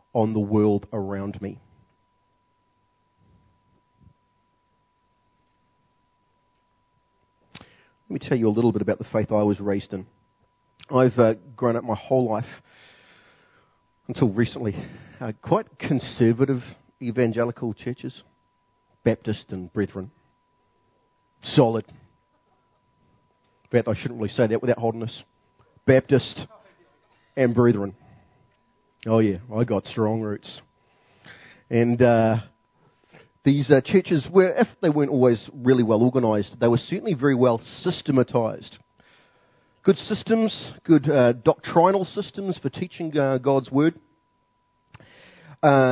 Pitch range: 110-140 Hz